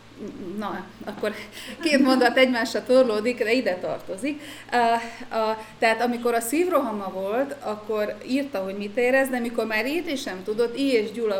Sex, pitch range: female, 195-240 Hz